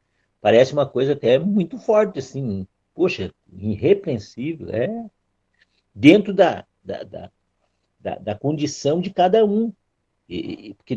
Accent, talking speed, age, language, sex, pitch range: Brazilian, 120 wpm, 50-69, Portuguese, male, 110-150 Hz